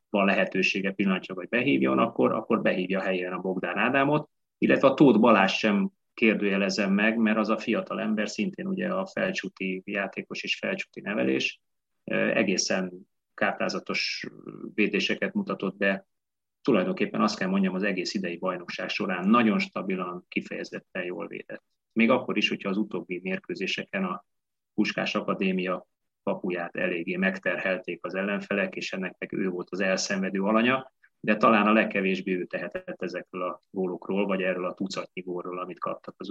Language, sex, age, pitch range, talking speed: Hungarian, male, 30-49, 95-130 Hz, 150 wpm